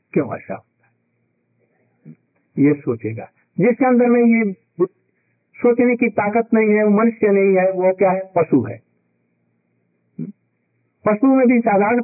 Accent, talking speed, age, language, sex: native, 135 wpm, 60-79, Hindi, male